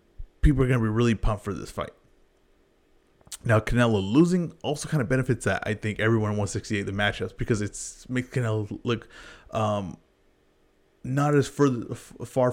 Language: English